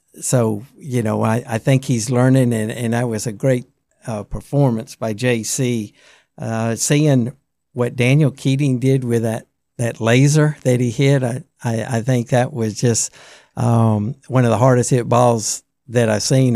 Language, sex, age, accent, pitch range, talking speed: English, male, 60-79, American, 115-130 Hz, 175 wpm